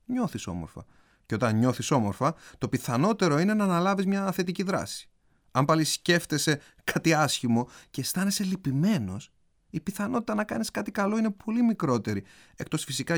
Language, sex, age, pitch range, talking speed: Greek, male, 30-49, 120-195 Hz, 150 wpm